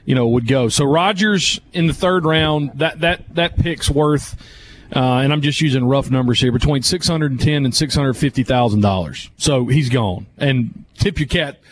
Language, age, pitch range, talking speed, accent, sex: English, 40-59, 135-175 Hz, 210 wpm, American, male